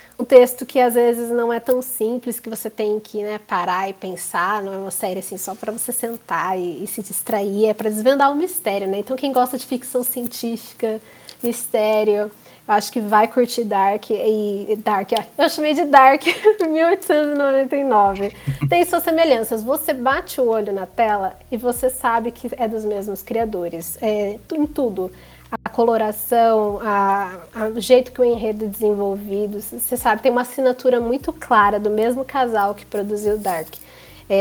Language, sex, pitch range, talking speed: Portuguese, female, 210-260 Hz, 180 wpm